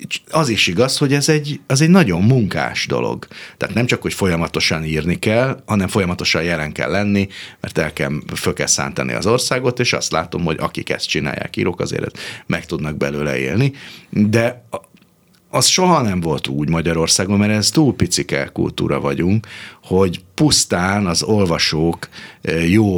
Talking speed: 160 wpm